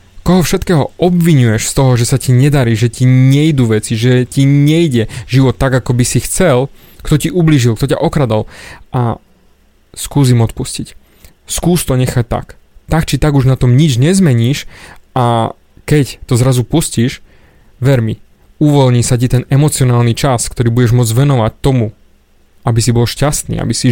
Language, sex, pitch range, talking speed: Slovak, male, 120-150 Hz, 165 wpm